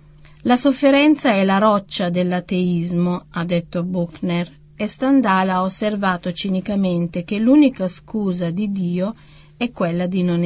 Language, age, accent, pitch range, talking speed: Italian, 40-59, native, 170-210 Hz, 130 wpm